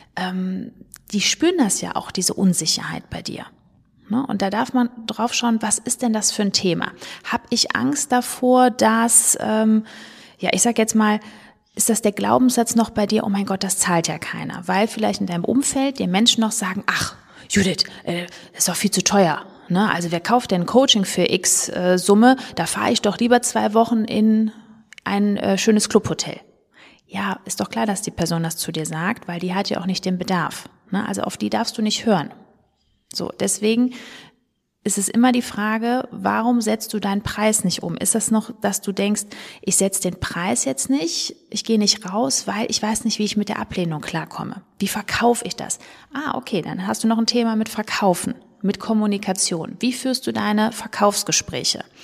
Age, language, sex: 30-49, German, female